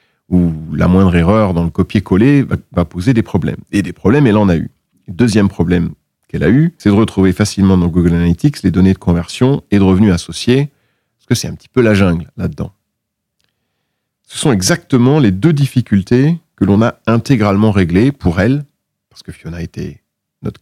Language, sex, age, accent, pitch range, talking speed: French, male, 40-59, French, 90-120 Hz, 195 wpm